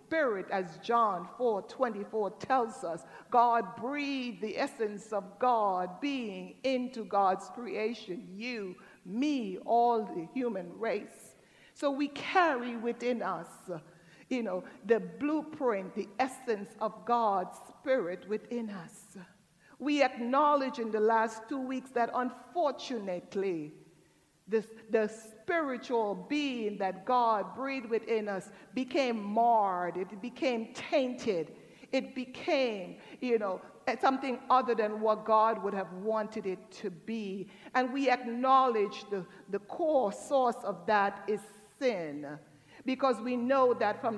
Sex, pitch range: female, 200-255 Hz